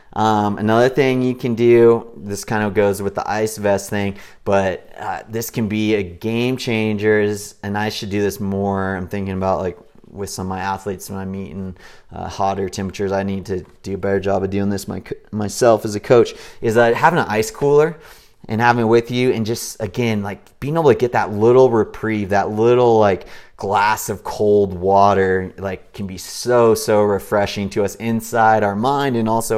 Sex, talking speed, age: male, 205 wpm, 30-49